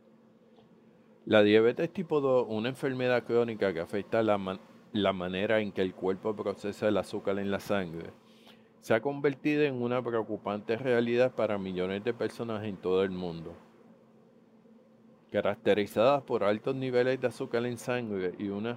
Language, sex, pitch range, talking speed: English, male, 100-120 Hz, 150 wpm